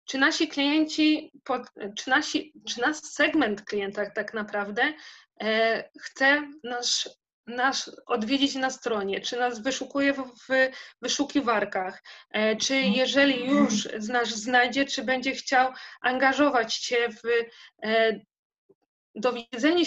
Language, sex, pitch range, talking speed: Polish, female, 225-275 Hz, 105 wpm